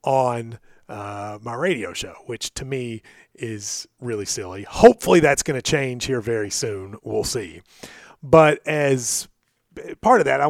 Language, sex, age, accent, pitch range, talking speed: English, male, 30-49, American, 120-150 Hz, 155 wpm